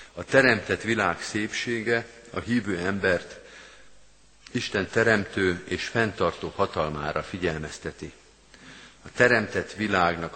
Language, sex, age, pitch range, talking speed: Hungarian, male, 50-69, 85-105 Hz, 95 wpm